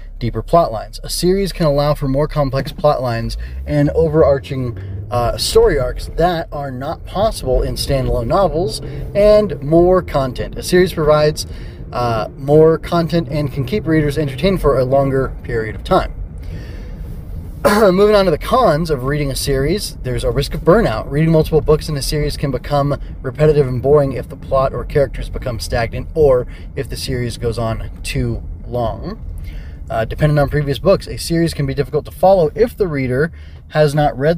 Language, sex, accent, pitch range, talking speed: English, male, American, 120-155 Hz, 180 wpm